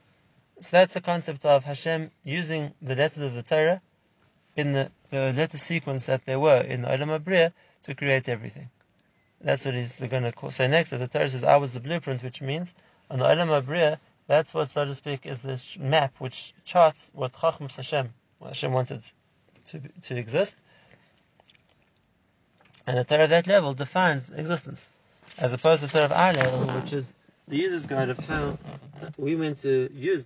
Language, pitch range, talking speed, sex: English, 130-160 Hz, 180 wpm, male